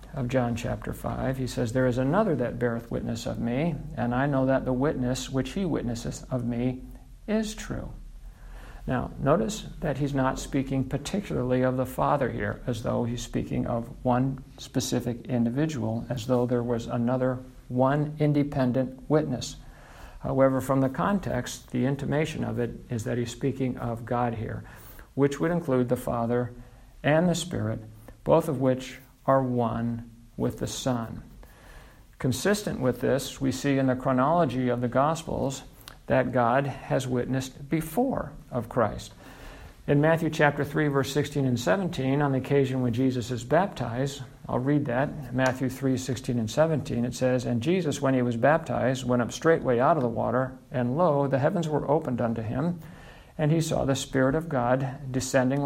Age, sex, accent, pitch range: 60-79, male, American, 125-140 Hz